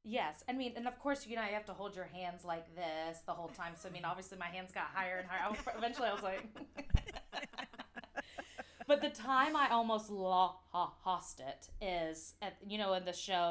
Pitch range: 175-255 Hz